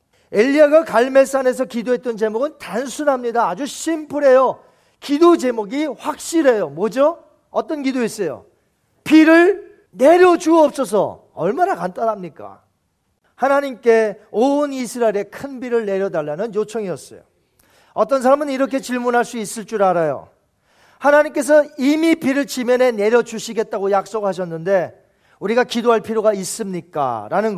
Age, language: 40-59, Korean